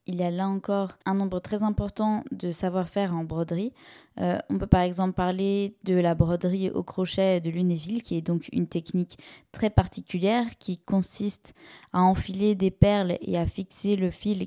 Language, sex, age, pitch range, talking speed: French, female, 20-39, 175-200 Hz, 185 wpm